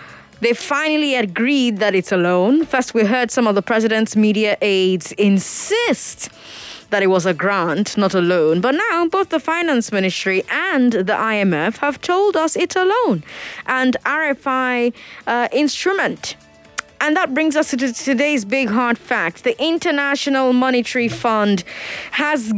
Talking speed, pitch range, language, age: 155 wpm, 195-285 Hz, English, 20-39